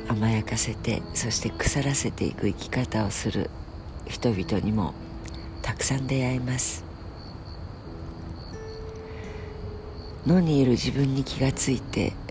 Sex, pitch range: female, 90-135 Hz